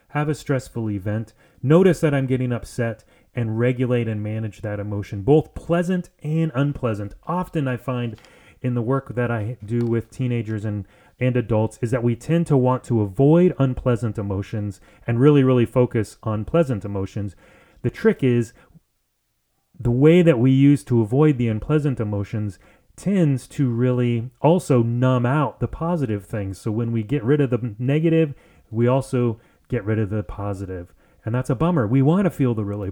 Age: 30-49